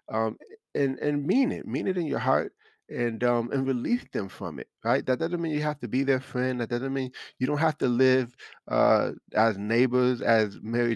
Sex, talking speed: male, 220 wpm